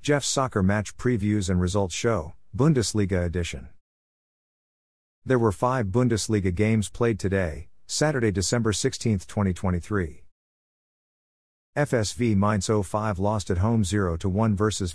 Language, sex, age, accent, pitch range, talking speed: English, male, 50-69, American, 90-115 Hz, 110 wpm